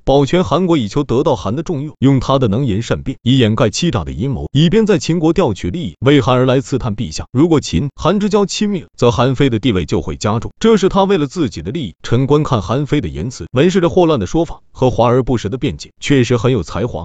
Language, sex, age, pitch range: Chinese, male, 30-49, 115-155 Hz